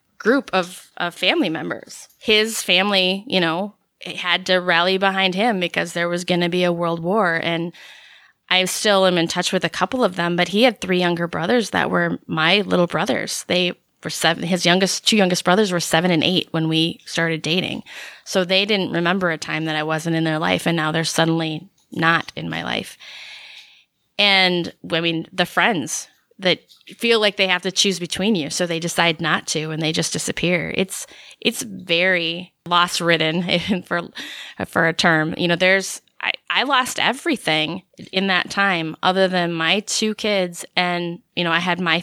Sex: female